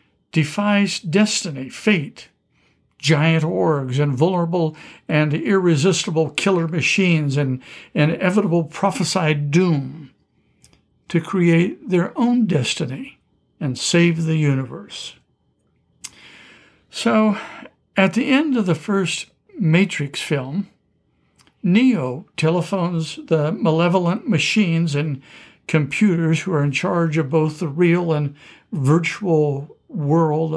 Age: 60-79